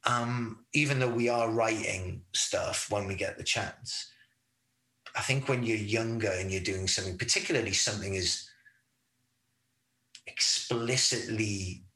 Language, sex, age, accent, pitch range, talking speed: English, male, 30-49, British, 100-120 Hz, 125 wpm